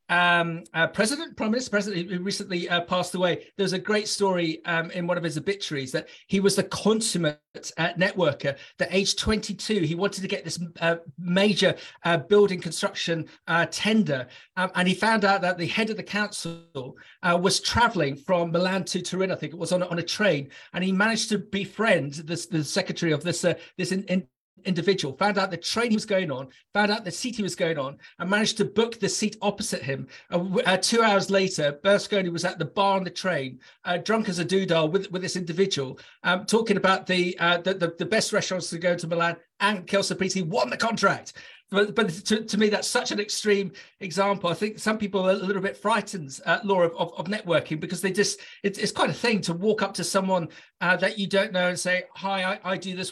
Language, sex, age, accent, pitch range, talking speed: English, male, 40-59, British, 175-205 Hz, 225 wpm